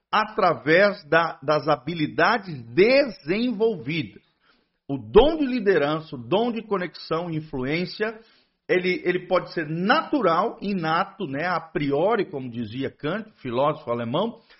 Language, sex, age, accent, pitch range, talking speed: Portuguese, male, 50-69, Brazilian, 135-205 Hz, 115 wpm